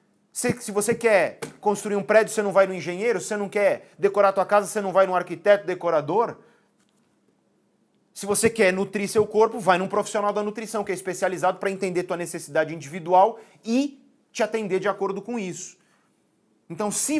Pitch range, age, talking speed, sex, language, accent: 180-220 Hz, 30-49, 180 wpm, male, Portuguese, Brazilian